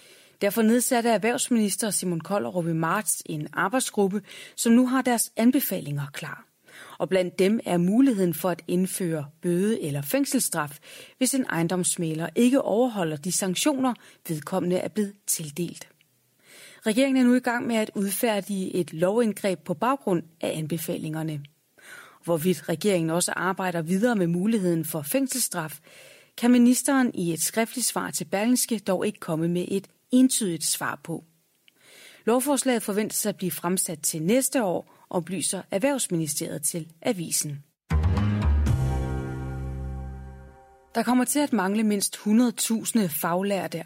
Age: 30-49